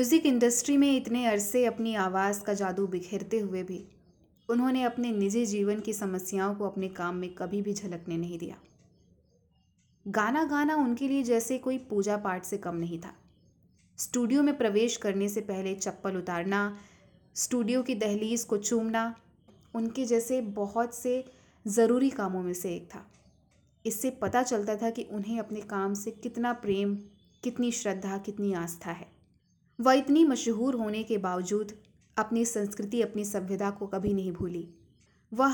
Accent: native